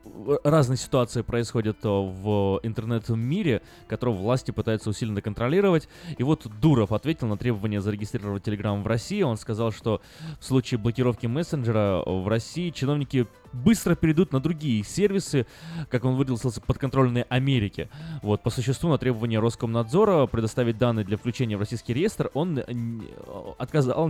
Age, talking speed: 20-39, 135 wpm